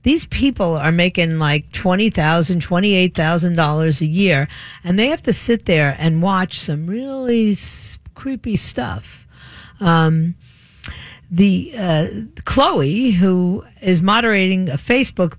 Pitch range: 165-220 Hz